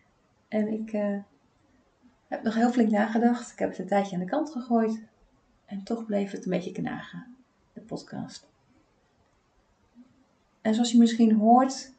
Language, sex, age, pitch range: Dutch, female, 30-49, 180-220 Hz